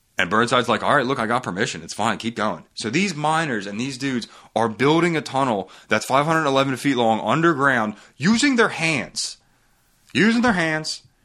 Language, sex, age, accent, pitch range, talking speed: English, male, 30-49, American, 105-160 Hz, 180 wpm